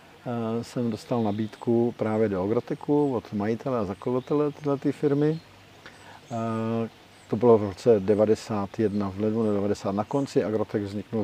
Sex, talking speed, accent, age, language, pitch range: male, 135 wpm, native, 50-69, Czech, 105-125 Hz